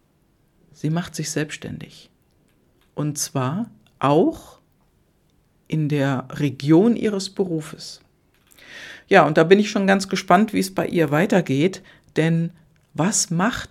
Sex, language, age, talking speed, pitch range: female, German, 50-69, 125 wpm, 150-185 Hz